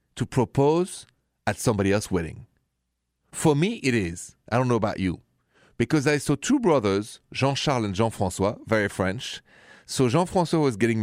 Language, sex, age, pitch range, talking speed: English, male, 40-59, 105-150 Hz, 175 wpm